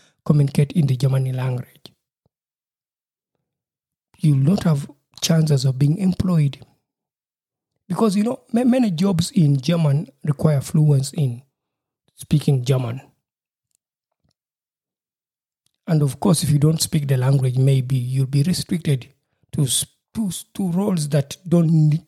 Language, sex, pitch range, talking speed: English, male, 135-165 Hz, 110 wpm